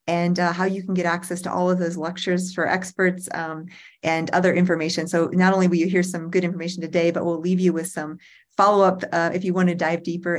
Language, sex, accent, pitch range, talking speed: English, female, American, 170-190 Hz, 235 wpm